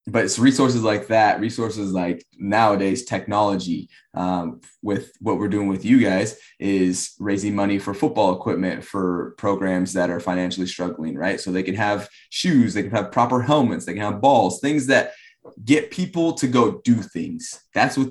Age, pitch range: 20-39, 95-120 Hz